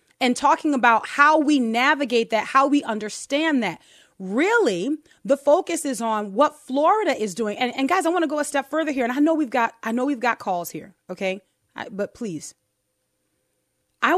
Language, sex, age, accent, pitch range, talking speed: English, female, 30-49, American, 220-310 Hz, 195 wpm